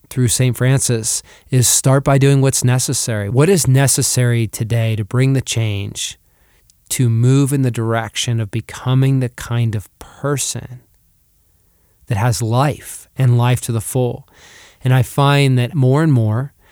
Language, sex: English, male